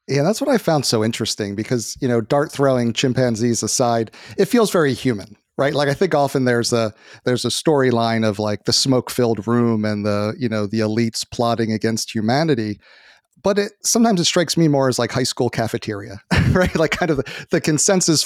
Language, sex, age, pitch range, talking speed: English, male, 40-59, 115-150 Hz, 200 wpm